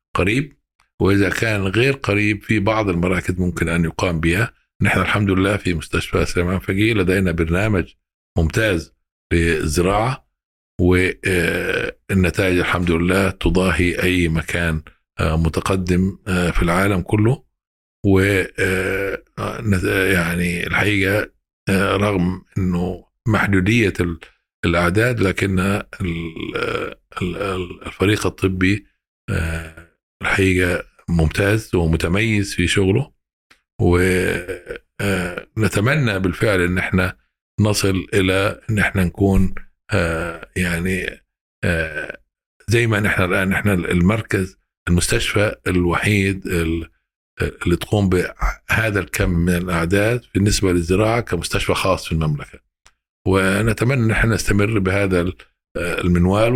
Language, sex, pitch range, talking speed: Arabic, male, 85-105 Hz, 90 wpm